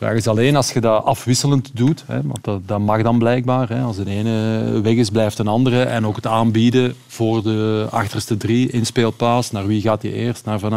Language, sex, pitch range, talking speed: Dutch, male, 120-145 Hz, 230 wpm